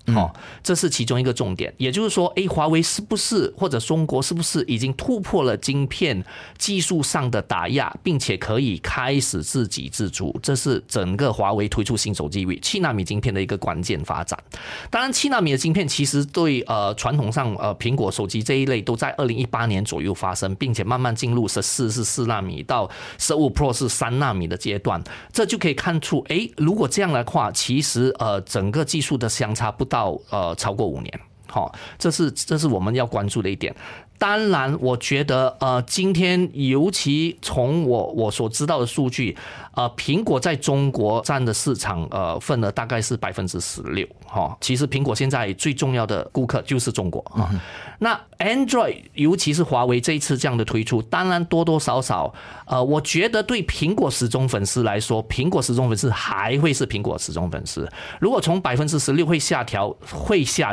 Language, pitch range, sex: Chinese, 110-150 Hz, male